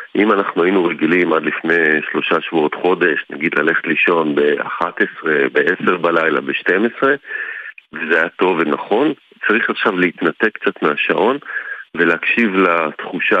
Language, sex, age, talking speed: Hebrew, male, 40-59, 130 wpm